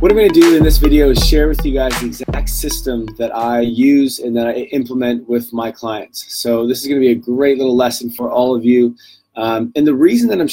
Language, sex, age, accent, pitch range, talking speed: English, male, 20-39, American, 120-140 Hz, 260 wpm